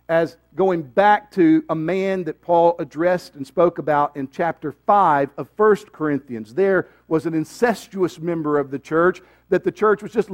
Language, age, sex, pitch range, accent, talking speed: English, 50-69, male, 140-185 Hz, American, 180 wpm